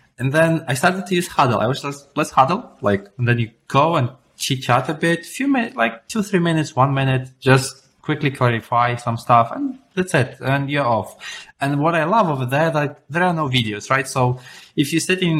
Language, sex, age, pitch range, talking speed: English, male, 20-39, 110-140 Hz, 220 wpm